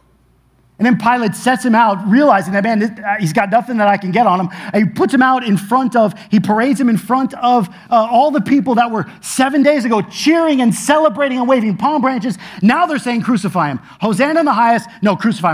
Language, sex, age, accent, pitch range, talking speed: English, male, 30-49, American, 160-245 Hz, 230 wpm